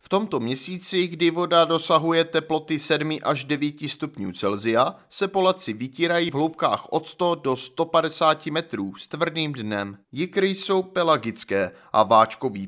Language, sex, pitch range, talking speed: Czech, male, 125-170 Hz, 140 wpm